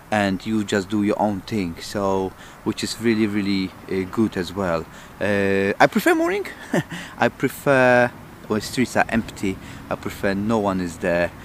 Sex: male